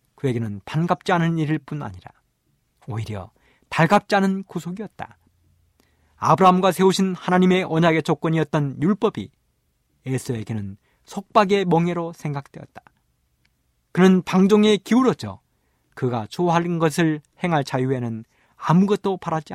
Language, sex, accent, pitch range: Korean, male, native, 115-185 Hz